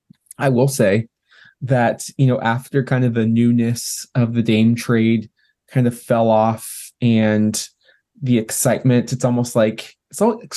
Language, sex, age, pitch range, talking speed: English, male, 20-39, 115-140 Hz, 150 wpm